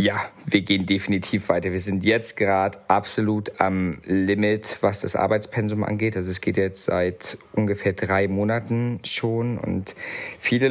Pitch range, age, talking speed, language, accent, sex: 95-115 Hz, 50-69, 150 wpm, German, German, male